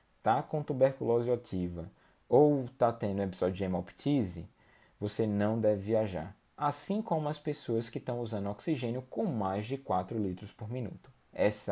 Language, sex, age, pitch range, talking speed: Portuguese, male, 20-39, 100-130 Hz, 150 wpm